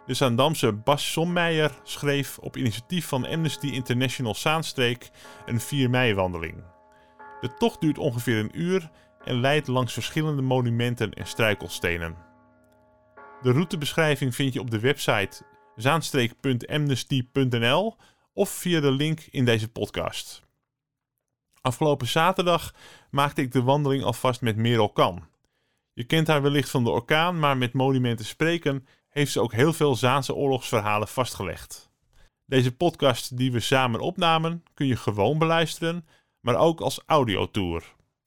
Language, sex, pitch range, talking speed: Dutch, male, 120-150 Hz, 130 wpm